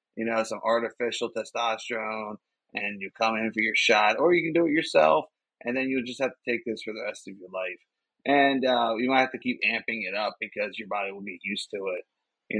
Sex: male